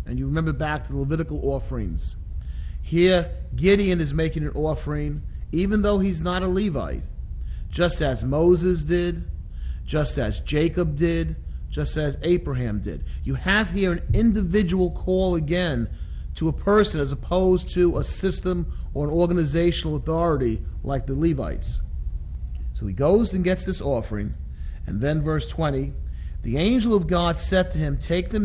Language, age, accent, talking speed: English, 40-59, American, 155 wpm